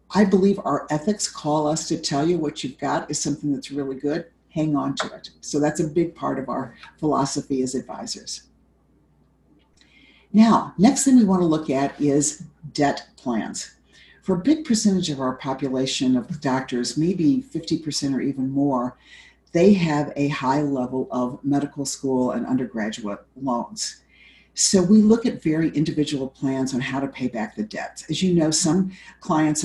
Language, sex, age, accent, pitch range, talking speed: English, female, 50-69, American, 140-185 Hz, 170 wpm